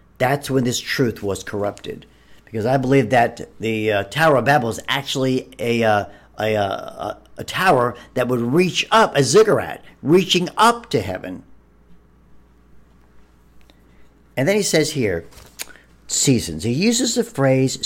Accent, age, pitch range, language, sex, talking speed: American, 50-69, 110-165 Hz, English, male, 145 wpm